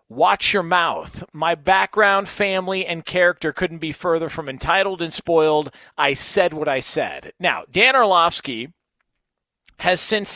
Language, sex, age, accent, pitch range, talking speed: English, male, 40-59, American, 150-190 Hz, 145 wpm